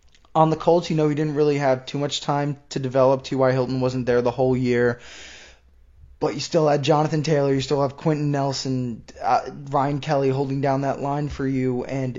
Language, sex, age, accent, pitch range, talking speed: English, male, 20-39, American, 135-180 Hz, 205 wpm